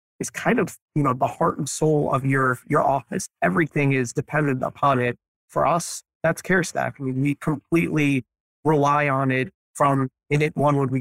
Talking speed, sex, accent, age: 190 wpm, male, American, 30-49